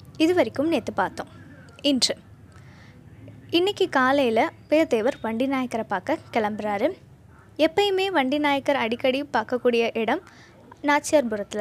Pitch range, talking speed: 235-310 Hz, 100 wpm